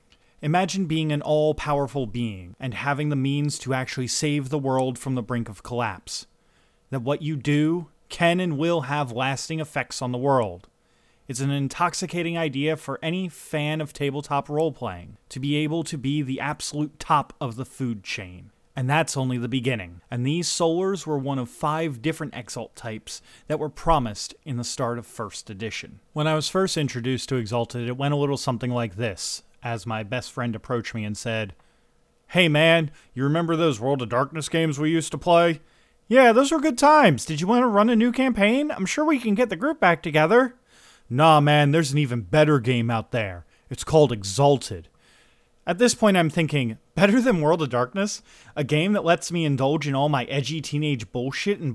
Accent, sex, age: American, male, 30-49